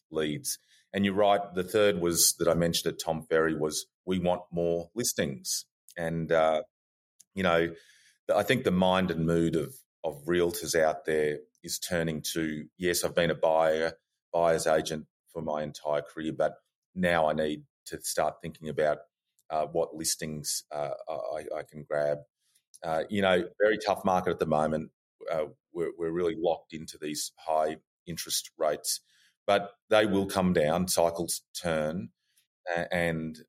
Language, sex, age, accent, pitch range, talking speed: English, male, 30-49, Australian, 75-90 Hz, 160 wpm